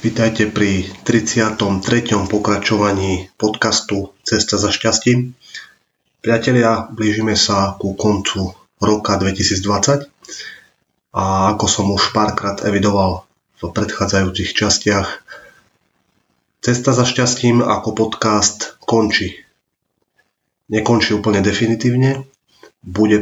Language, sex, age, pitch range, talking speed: Slovak, male, 30-49, 95-110 Hz, 90 wpm